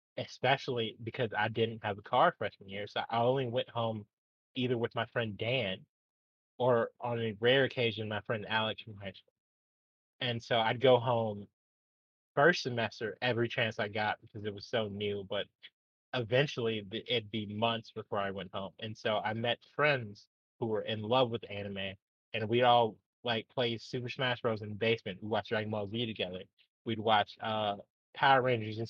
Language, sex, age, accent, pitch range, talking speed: English, male, 20-39, American, 105-120 Hz, 180 wpm